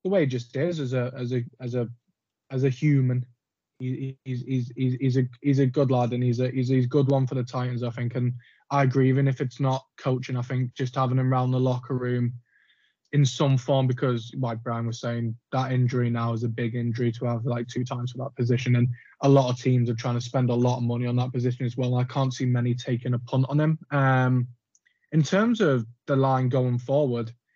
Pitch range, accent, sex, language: 125-140 Hz, British, male, English